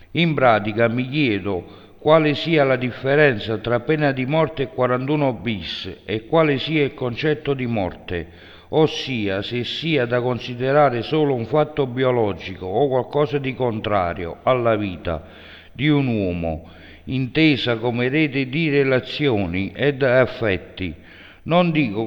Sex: male